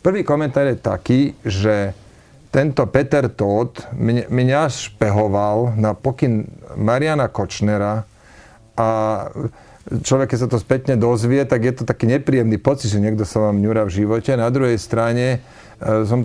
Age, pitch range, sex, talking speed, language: 40-59, 110-125 Hz, male, 140 wpm, Slovak